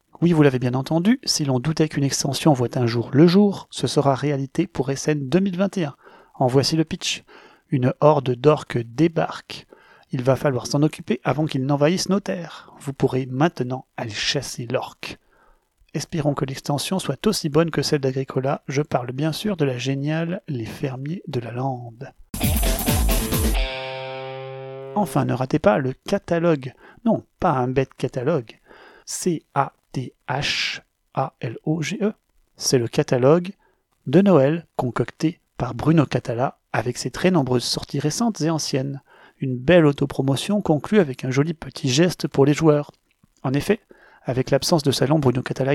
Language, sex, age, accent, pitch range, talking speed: French, male, 30-49, French, 130-160 Hz, 150 wpm